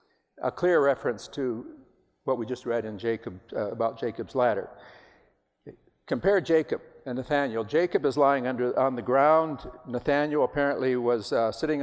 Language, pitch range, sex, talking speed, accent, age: English, 120-155 Hz, male, 150 wpm, American, 60-79